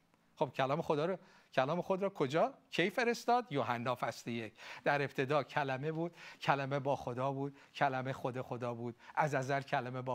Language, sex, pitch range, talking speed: Persian, male, 130-190 Hz, 170 wpm